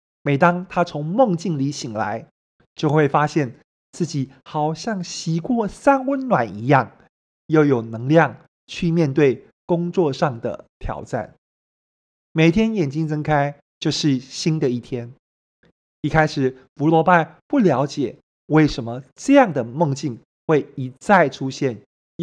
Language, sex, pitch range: Chinese, male, 130-175 Hz